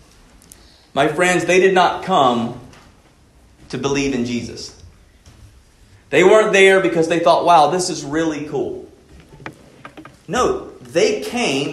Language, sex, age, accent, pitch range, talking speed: English, male, 40-59, American, 155-240 Hz, 125 wpm